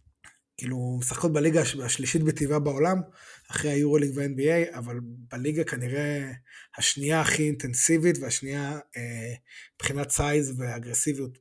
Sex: male